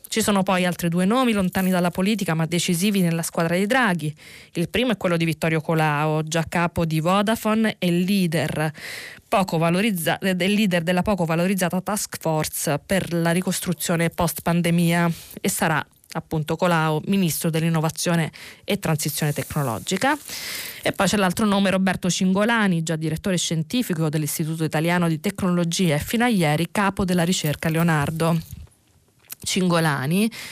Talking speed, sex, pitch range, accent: 140 wpm, female, 165-195 Hz, native